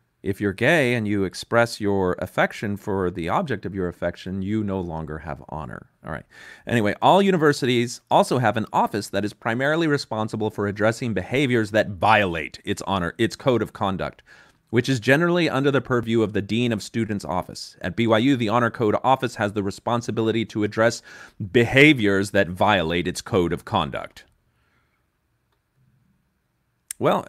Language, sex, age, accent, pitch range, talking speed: English, male, 30-49, American, 95-120 Hz, 165 wpm